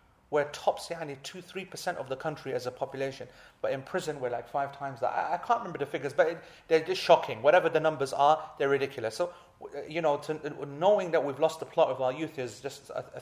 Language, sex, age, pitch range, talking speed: English, male, 30-49, 130-165 Hz, 240 wpm